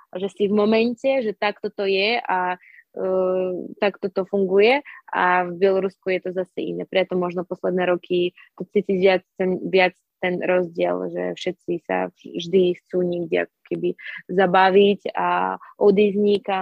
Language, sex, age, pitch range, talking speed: Slovak, female, 20-39, 185-220 Hz, 140 wpm